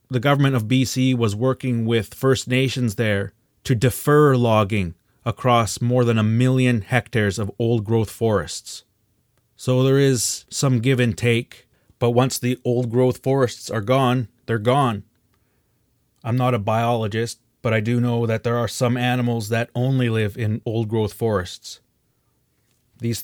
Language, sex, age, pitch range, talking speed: English, male, 30-49, 115-125 Hz, 150 wpm